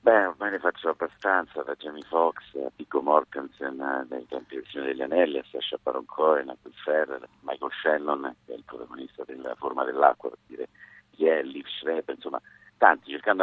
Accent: native